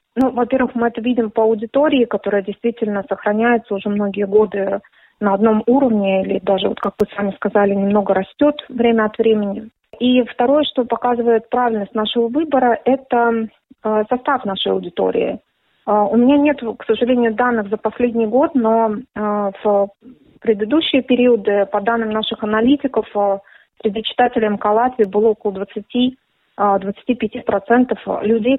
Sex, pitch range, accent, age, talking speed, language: female, 205-245 Hz, native, 30-49, 130 wpm, Russian